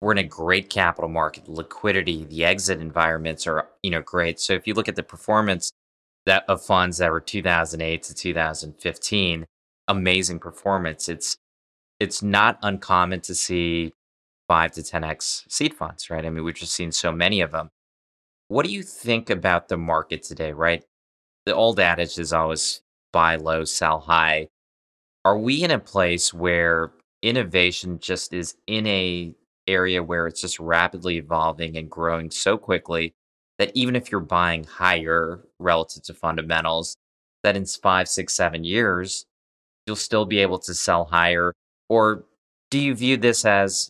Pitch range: 80-95 Hz